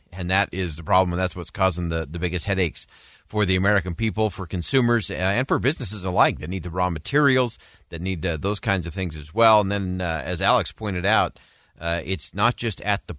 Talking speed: 225 wpm